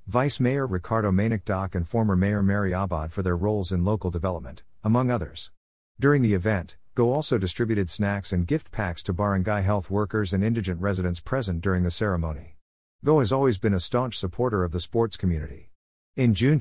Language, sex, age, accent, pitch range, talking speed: English, male, 50-69, American, 90-115 Hz, 185 wpm